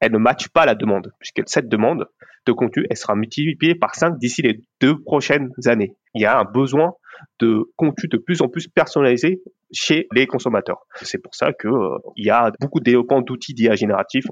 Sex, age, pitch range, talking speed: male, 30-49, 115-155 Hz, 200 wpm